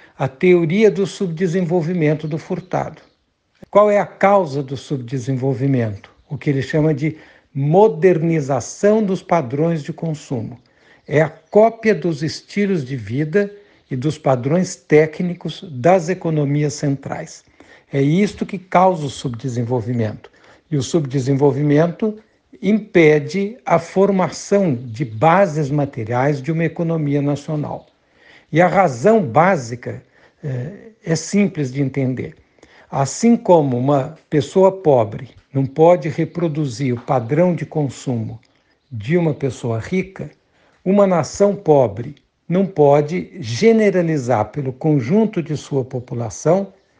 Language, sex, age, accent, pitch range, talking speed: Portuguese, male, 60-79, Brazilian, 135-180 Hz, 115 wpm